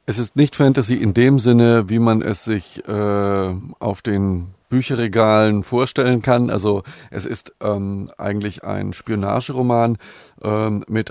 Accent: German